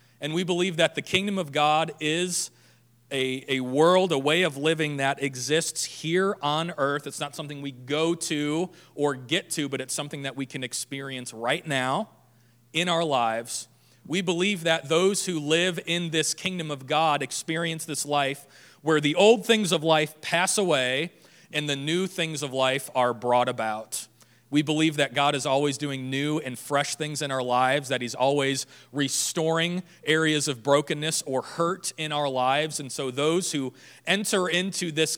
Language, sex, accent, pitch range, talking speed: English, male, American, 130-165 Hz, 180 wpm